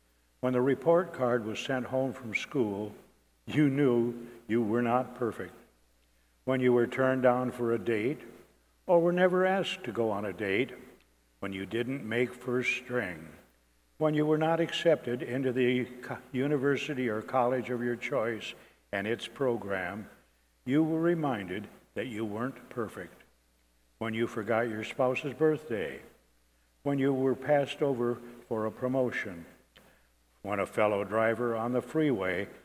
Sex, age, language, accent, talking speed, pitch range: male, 60-79, English, American, 150 wpm, 100-130 Hz